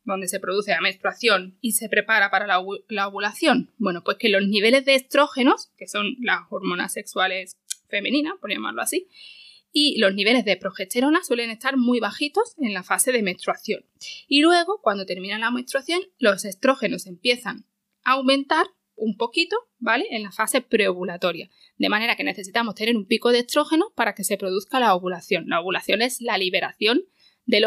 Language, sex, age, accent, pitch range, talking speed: Spanish, female, 20-39, Spanish, 195-265 Hz, 175 wpm